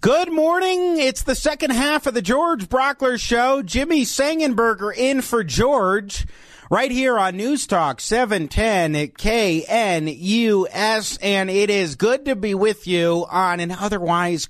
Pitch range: 155-220 Hz